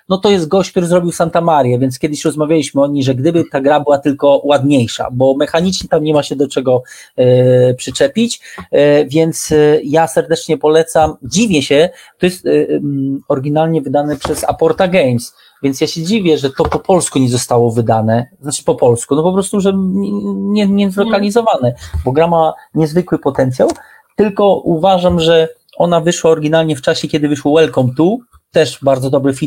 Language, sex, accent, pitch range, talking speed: Polish, male, native, 135-175 Hz, 175 wpm